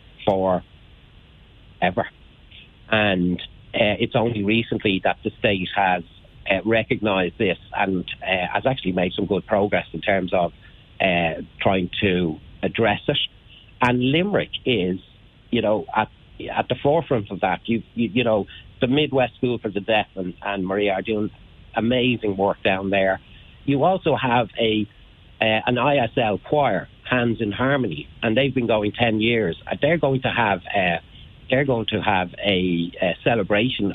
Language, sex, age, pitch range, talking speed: English, male, 60-79, 95-120 Hz, 155 wpm